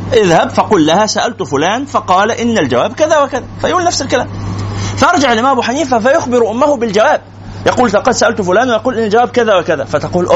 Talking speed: 175 wpm